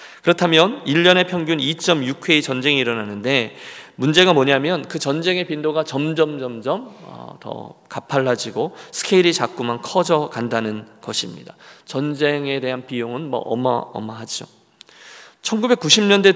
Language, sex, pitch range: Korean, male, 125-165 Hz